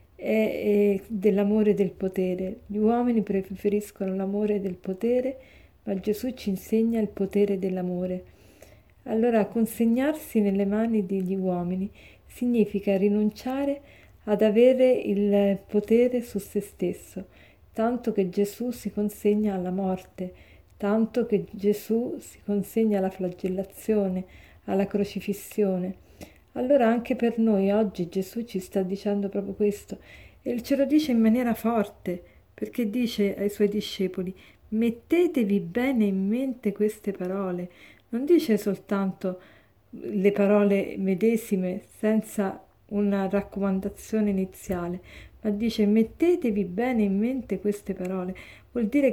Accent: native